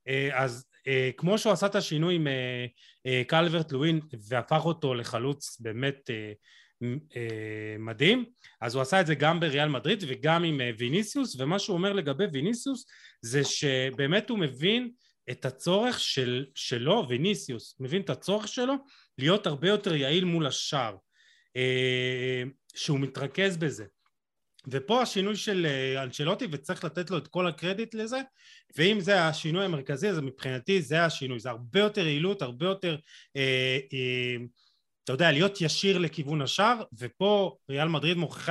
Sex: male